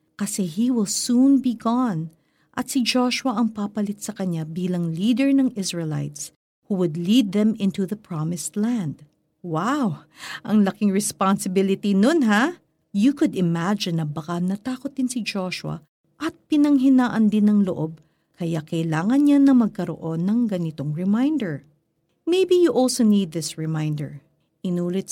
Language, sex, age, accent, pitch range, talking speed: Filipino, female, 50-69, native, 165-250 Hz, 145 wpm